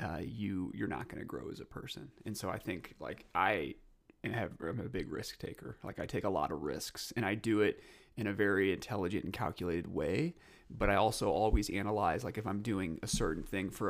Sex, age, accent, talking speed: male, 30-49, American, 225 wpm